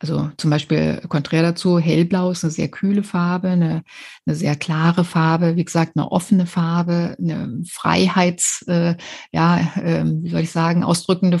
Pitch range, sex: 165-185 Hz, female